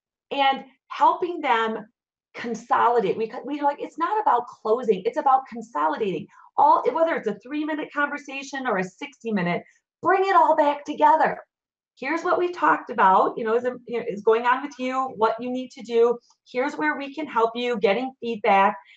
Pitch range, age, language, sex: 220-295 Hz, 30-49, English, female